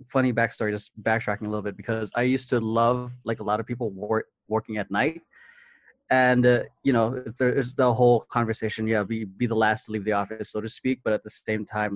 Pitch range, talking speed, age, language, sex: 105-125 Hz, 230 wpm, 20-39, English, male